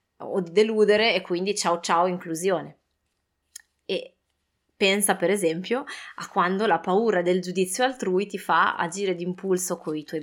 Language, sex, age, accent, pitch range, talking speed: Italian, female, 20-39, native, 175-210 Hz, 160 wpm